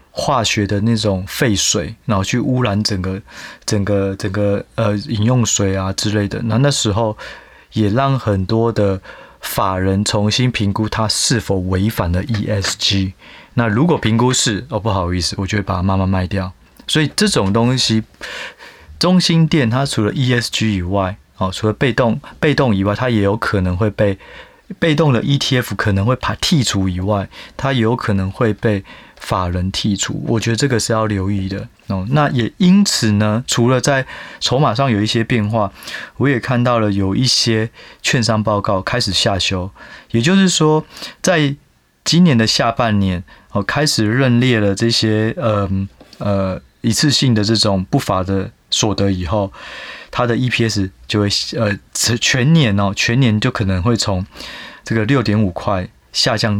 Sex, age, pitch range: male, 20-39, 100-125 Hz